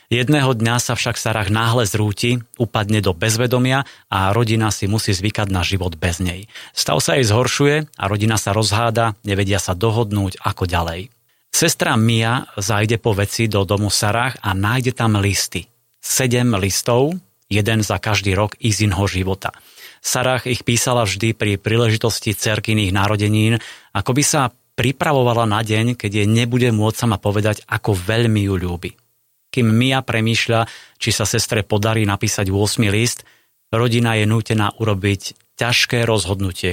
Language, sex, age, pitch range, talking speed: Slovak, male, 30-49, 100-120 Hz, 155 wpm